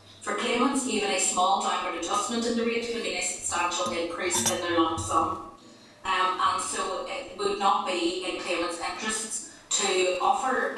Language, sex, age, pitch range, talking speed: English, female, 30-49, 170-220 Hz, 165 wpm